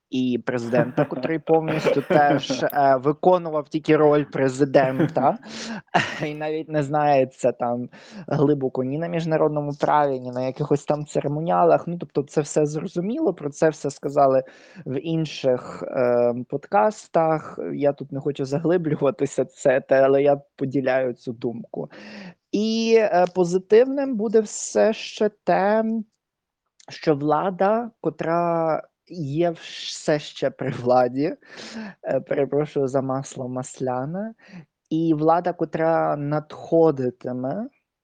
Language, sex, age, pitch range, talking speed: Ukrainian, male, 20-39, 135-175 Hz, 115 wpm